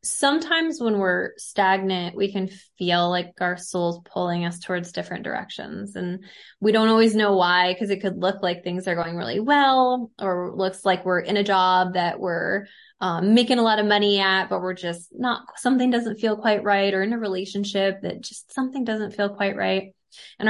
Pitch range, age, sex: 180-210 Hz, 20-39, female